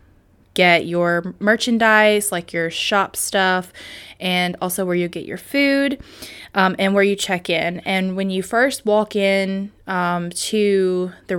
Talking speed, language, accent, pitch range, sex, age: 155 wpm, English, American, 170-205 Hz, female, 20-39